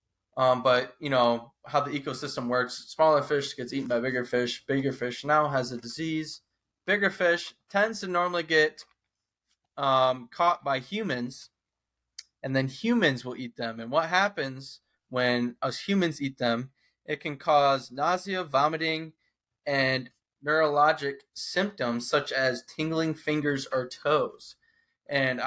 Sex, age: male, 20-39